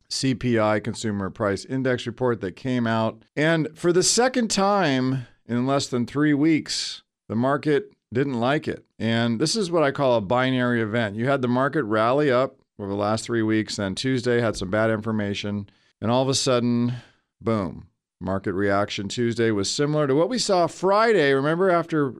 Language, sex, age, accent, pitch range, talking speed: English, male, 40-59, American, 105-140 Hz, 180 wpm